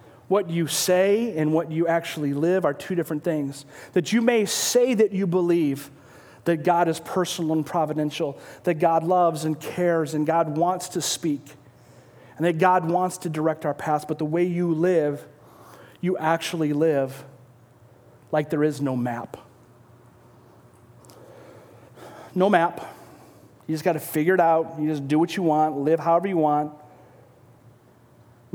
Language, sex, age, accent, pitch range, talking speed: English, male, 40-59, American, 140-175 Hz, 160 wpm